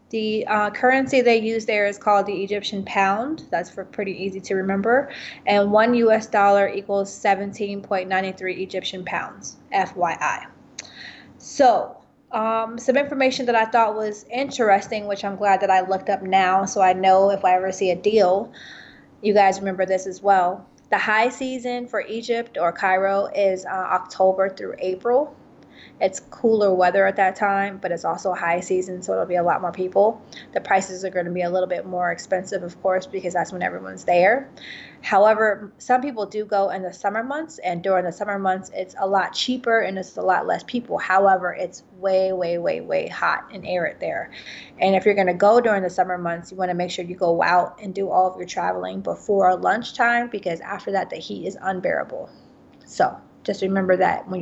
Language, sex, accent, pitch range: English, female, American, 185-215 Hz